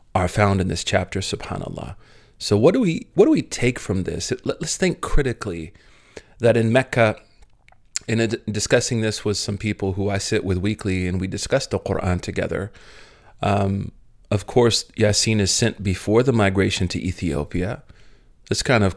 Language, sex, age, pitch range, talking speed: English, male, 40-59, 100-115 Hz, 170 wpm